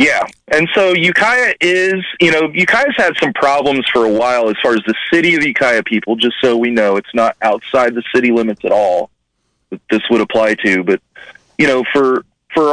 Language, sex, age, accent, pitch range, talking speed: English, male, 40-59, American, 105-140 Hz, 205 wpm